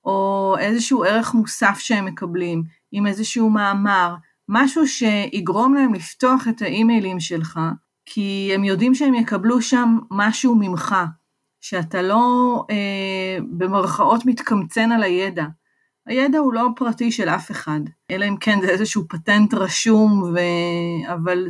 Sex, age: female, 30-49